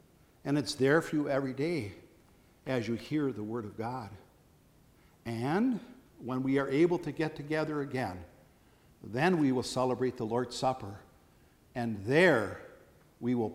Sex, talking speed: male, 150 wpm